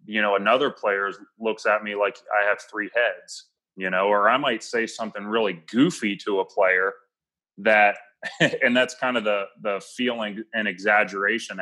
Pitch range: 100-115 Hz